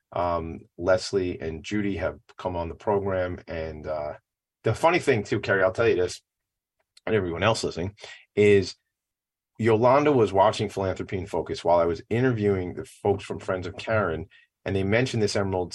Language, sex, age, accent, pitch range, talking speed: English, male, 30-49, American, 90-120 Hz, 175 wpm